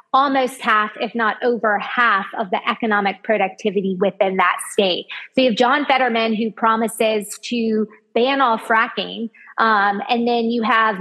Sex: female